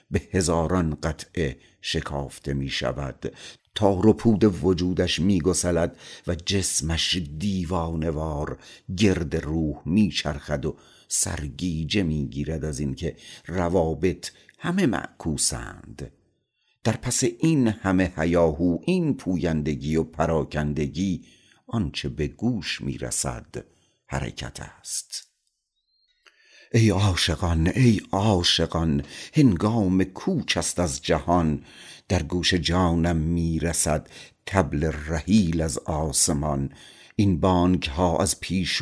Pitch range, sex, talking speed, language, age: 80-95 Hz, male, 95 wpm, Persian, 60-79